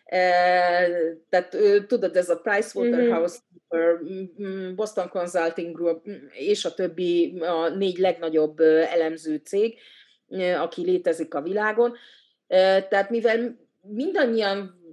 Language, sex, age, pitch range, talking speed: Hungarian, female, 30-49, 165-205 Hz, 90 wpm